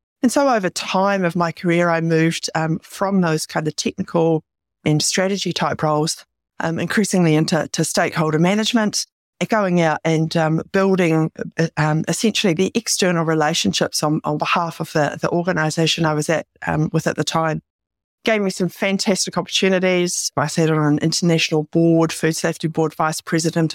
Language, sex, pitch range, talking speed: English, female, 160-190 Hz, 165 wpm